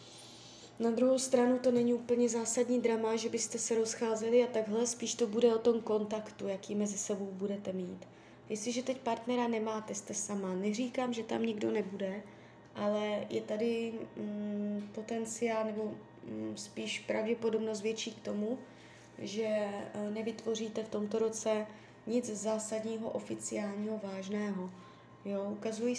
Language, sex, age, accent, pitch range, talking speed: Czech, female, 20-39, native, 205-235 Hz, 130 wpm